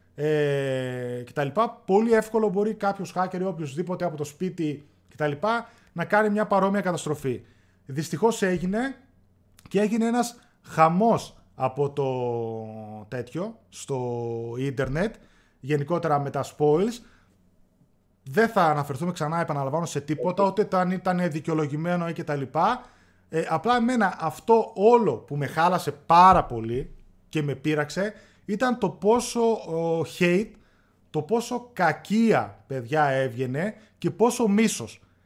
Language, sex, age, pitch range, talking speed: Greek, male, 20-39, 135-200 Hz, 130 wpm